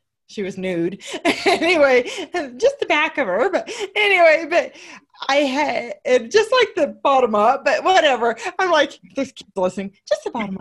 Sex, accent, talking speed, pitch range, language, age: female, American, 165 wpm, 200-325 Hz, English, 30-49